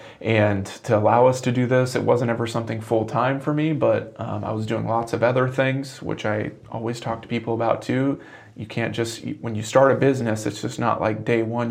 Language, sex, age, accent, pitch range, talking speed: English, male, 30-49, American, 110-125 Hz, 235 wpm